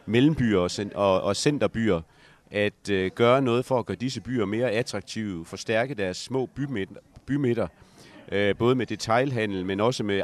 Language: Danish